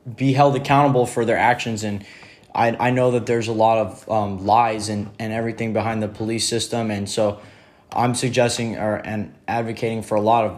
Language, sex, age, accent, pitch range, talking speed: English, male, 20-39, American, 110-135 Hz, 200 wpm